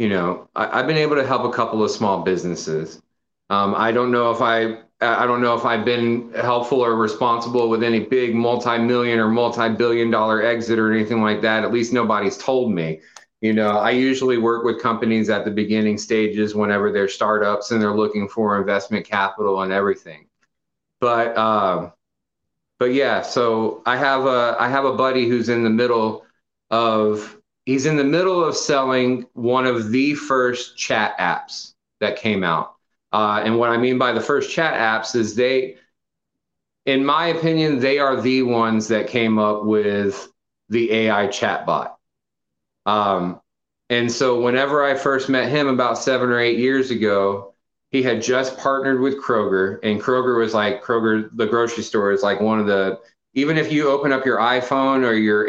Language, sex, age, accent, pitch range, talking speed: English, male, 30-49, American, 110-125 Hz, 180 wpm